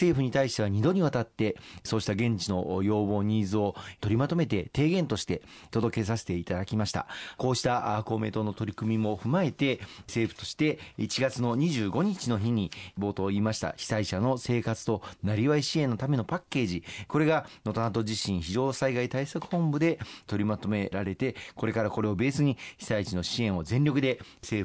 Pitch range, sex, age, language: 100-135 Hz, male, 40-59, Japanese